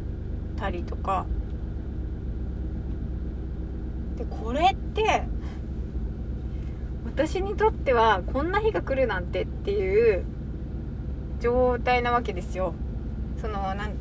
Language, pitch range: Japanese, 70-75 Hz